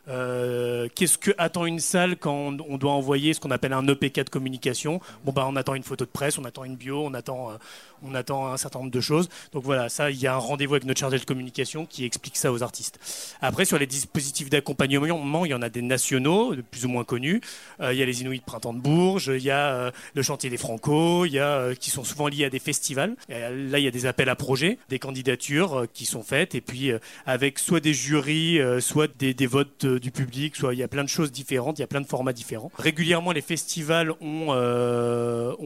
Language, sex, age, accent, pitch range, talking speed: French, male, 30-49, French, 130-150 Hz, 250 wpm